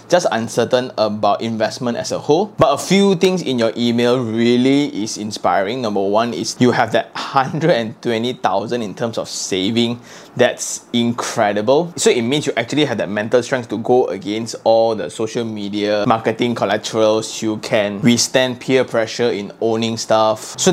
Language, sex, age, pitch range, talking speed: English, male, 20-39, 110-130 Hz, 165 wpm